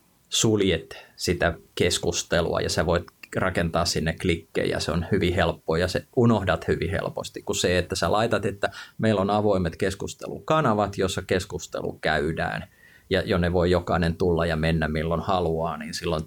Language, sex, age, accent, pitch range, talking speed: Finnish, male, 30-49, native, 85-95 Hz, 160 wpm